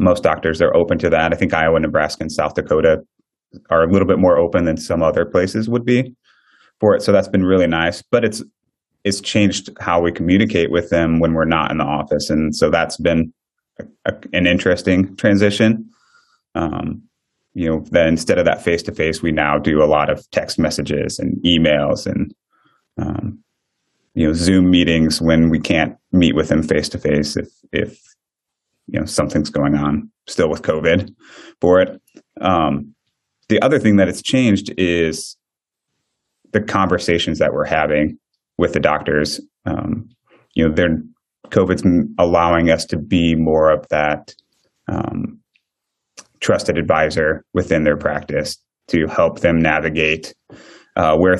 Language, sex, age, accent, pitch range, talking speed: English, male, 30-49, American, 80-95 Hz, 165 wpm